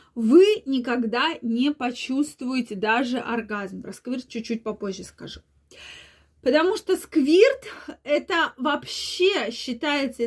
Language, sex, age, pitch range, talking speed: Russian, female, 20-39, 240-325 Hz, 95 wpm